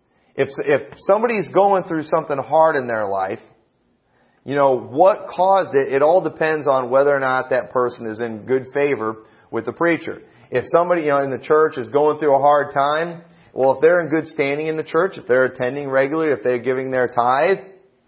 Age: 40-59